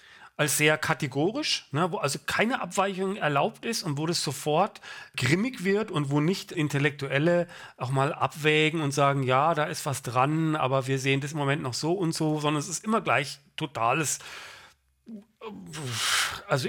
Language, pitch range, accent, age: English, 130-170 Hz, German, 40-59